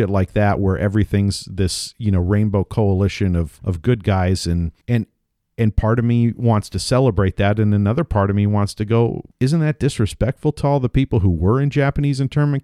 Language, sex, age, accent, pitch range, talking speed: English, male, 50-69, American, 95-125 Hz, 205 wpm